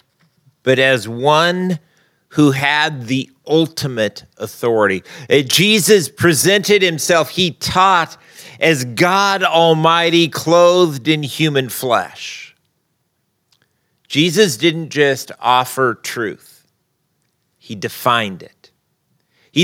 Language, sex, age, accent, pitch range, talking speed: English, male, 40-59, American, 130-165 Hz, 90 wpm